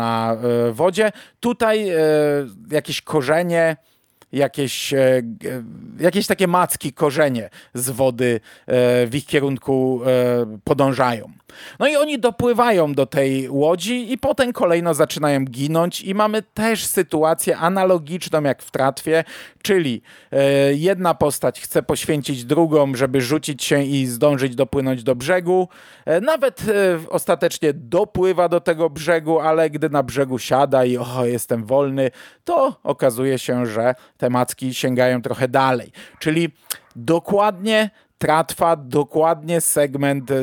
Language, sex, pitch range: Polish, male, 135-175 Hz